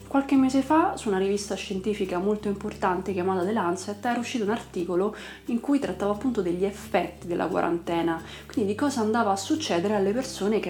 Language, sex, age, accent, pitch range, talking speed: Italian, female, 30-49, native, 180-220 Hz, 185 wpm